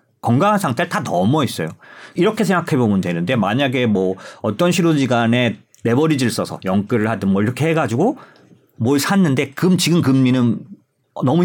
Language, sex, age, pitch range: Korean, male, 40-59, 110-165 Hz